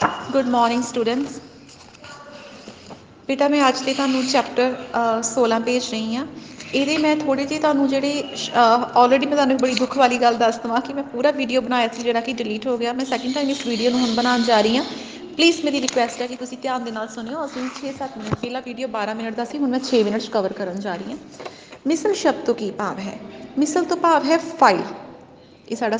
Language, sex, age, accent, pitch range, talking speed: Hindi, female, 30-49, native, 225-275 Hz, 205 wpm